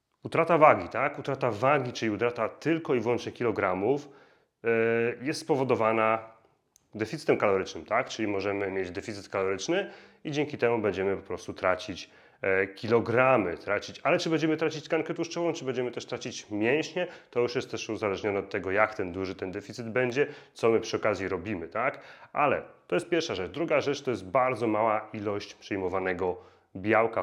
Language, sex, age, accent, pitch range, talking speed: Polish, male, 30-49, native, 110-135 Hz, 165 wpm